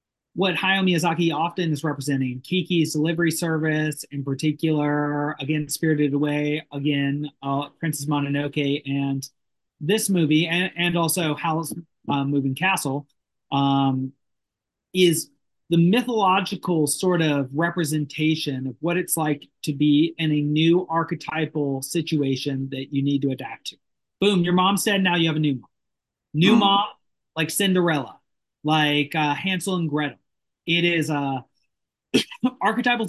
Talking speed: 135 wpm